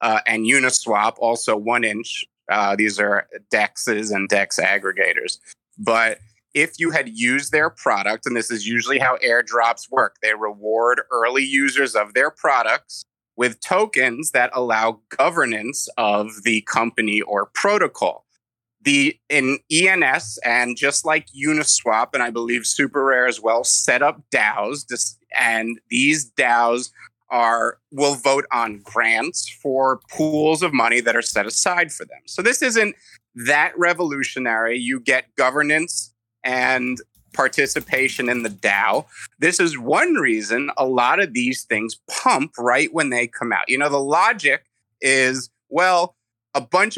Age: 30-49